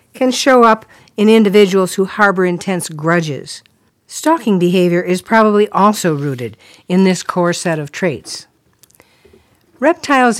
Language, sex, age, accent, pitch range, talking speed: English, female, 60-79, American, 160-220 Hz, 125 wpm